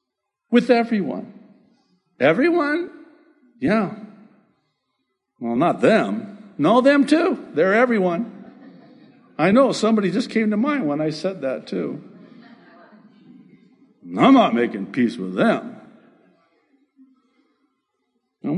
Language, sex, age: English, male, 60-79